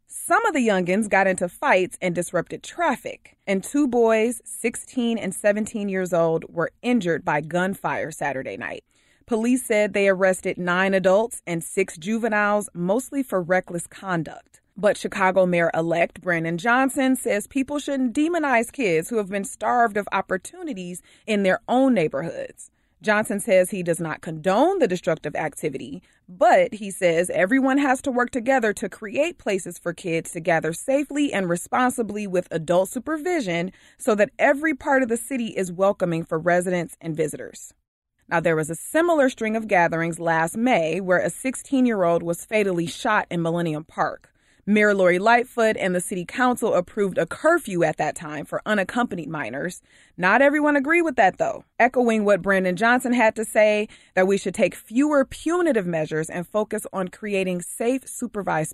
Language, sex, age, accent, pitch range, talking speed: English, female, 30-49, American, 170-240 Hz, 165 wpm